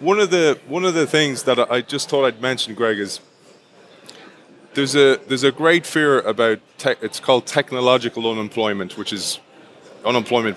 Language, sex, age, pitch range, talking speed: English, male, 20-39, 115-135 Hz, 170 wpm